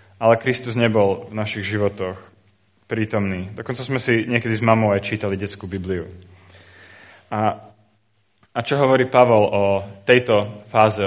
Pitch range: 100-115 Hz